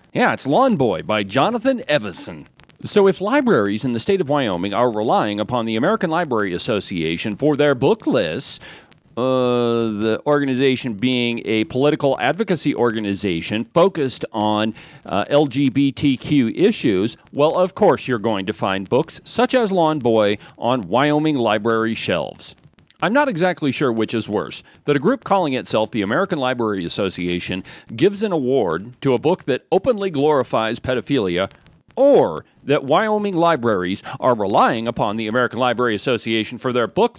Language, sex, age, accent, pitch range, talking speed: English, male, 40-59, American, 110-165 Hz, 155 wpm